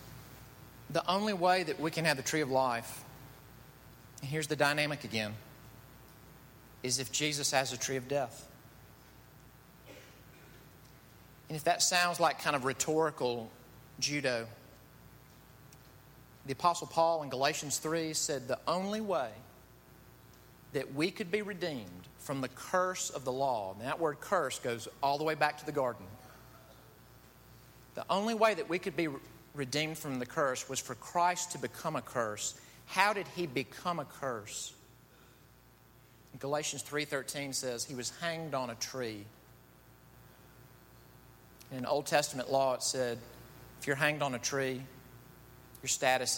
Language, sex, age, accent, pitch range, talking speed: English, male, 40-59, American, 115-155 Hz, 150 wpm